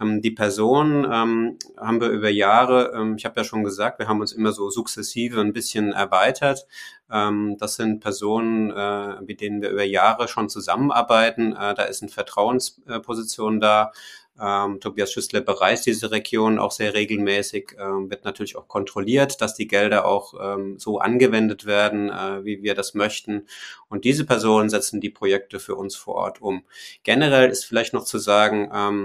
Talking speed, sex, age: 165 wpm, male, 30-49